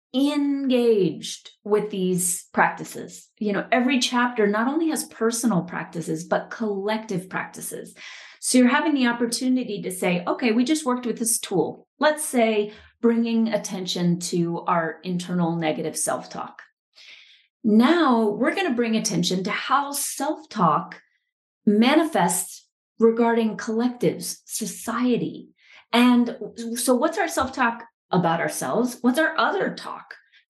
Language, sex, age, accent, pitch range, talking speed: English, female, 30-49, American, 185-245 Hz, 125 wpm